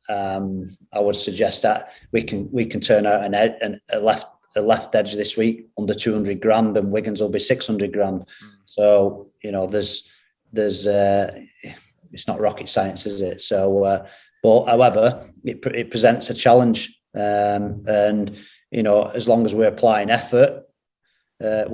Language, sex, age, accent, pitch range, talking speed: English, male, 30-49, British, 100-110 Hz, 170 wpm